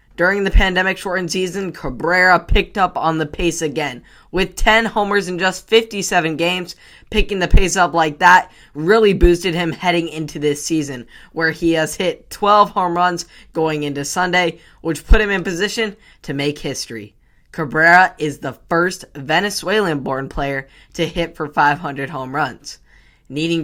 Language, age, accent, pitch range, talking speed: English, 10-29, American, 155-190 Hz, 160 wpm